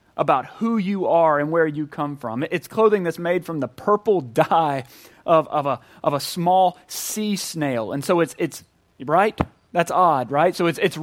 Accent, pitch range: American, 150-190 Hz